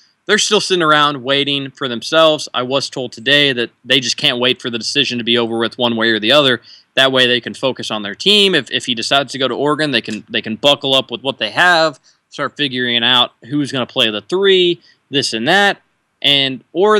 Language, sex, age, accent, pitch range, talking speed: English, male, 20-39, American, 120-150 Hz, 240 wpm